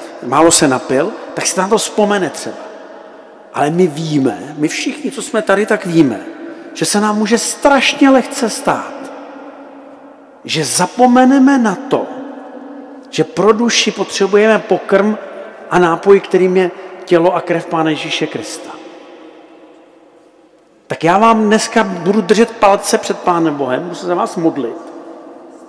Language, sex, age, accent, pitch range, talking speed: Czech, male, 50-69, native, 170-235 Hz, 140 wpm